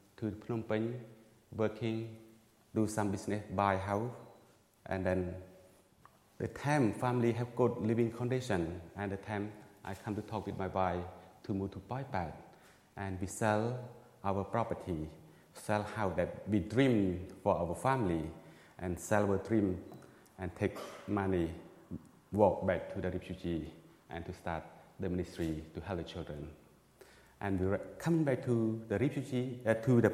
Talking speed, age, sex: 150 wpm, 30-49, male